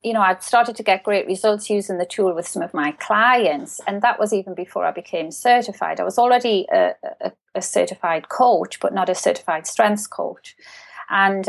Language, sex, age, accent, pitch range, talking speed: English, female, 30-49, British, 190-245 Hz, 200 wpm